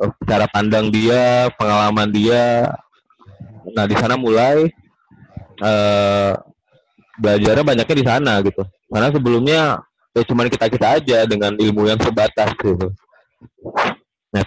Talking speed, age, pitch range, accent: 115 wpm, 20-39, 105-130 Hz, native